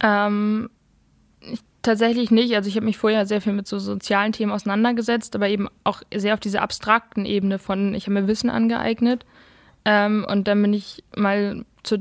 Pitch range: 200-220 Hz